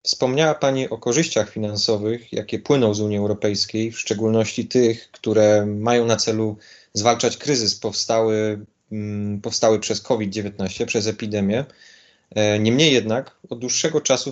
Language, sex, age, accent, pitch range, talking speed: Polish, male, 30-49, native, 110-125 Hz, 125 wpm